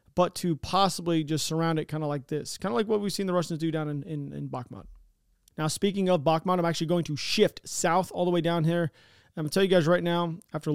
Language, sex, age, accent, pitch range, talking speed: English, male, 30-49, American, 155-185 Hz, 270 wpm